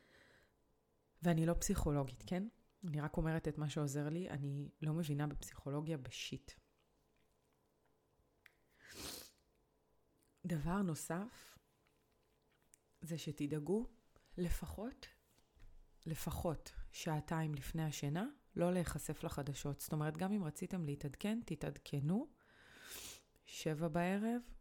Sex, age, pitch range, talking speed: female, 30-49, 140-175 Hz, 90 wpm